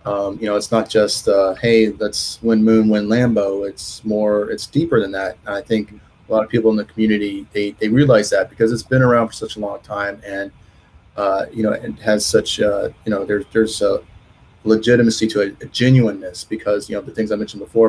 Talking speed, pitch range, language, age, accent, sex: 230 wpm, 100-115 Hz, English, 30-49, American, male